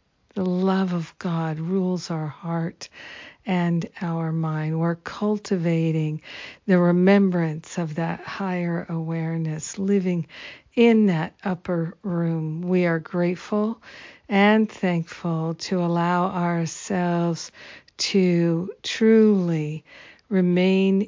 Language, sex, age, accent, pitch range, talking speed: English, female, 50-69, American, 165-190 Hz, 95 wpm